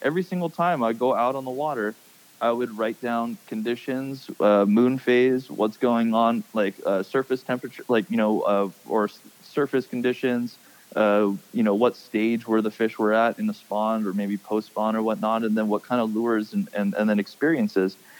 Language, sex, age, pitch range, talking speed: English, male, 20-39, 105-130 Hz, 200 wpm